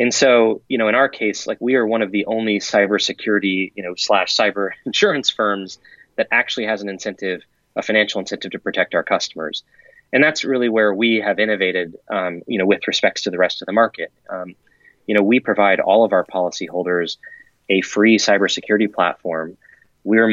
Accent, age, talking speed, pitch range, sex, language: American, 20-39, 190 wpm, 100-130 Hz, male, English